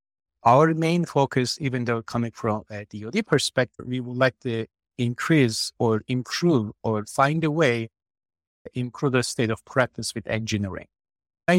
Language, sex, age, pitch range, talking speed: English, male, 50-69, 110-135 Hz, 155 wpm